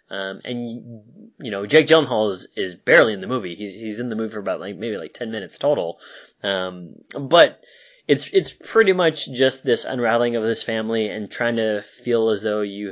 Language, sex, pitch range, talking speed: English, male, 105-130 Hz, 205 wpm